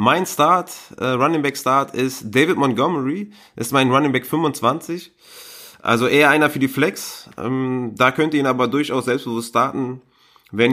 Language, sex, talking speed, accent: German, male, 170 wpm, German